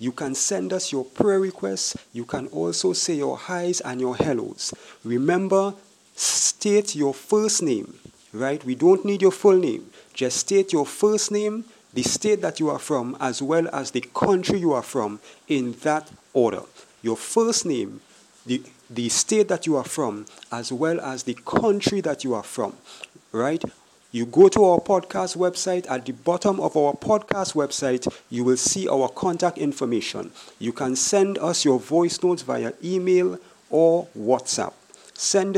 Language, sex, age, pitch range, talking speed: English, male, 50-69, 130-180 Hz, 170 wpm